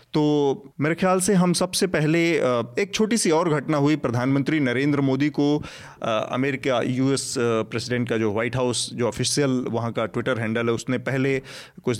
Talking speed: 170 wpm